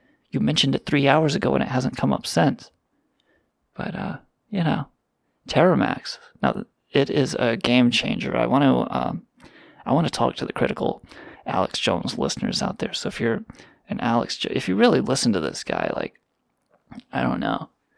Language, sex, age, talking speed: English, male, 20-39, 185 wpm